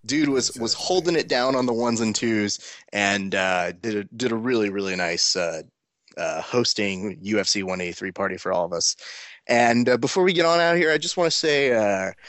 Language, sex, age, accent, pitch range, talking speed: English, male, 20-39, American, 105-140 Hz, 220 wpm